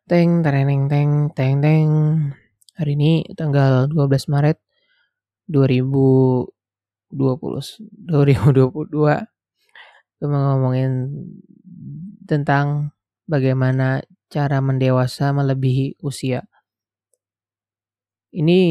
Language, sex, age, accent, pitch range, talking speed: Indonesian, male, 20-39, native, 130-155 Hz, 60 wpm